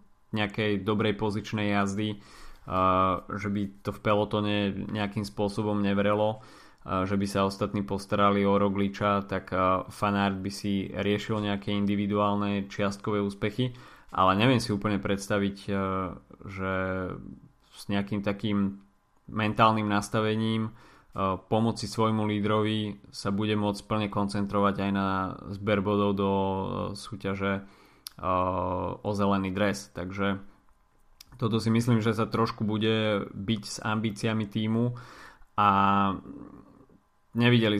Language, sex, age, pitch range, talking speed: Slovak, male, 20-39, 95-105 Hz, 120 wpm